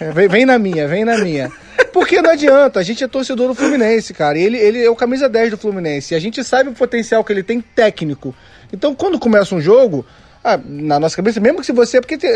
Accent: Brazilian